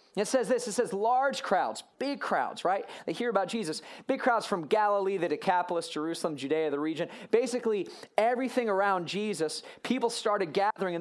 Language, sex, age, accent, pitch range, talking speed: English, male, 30-49, American, 170-225 Hz, 175 wpm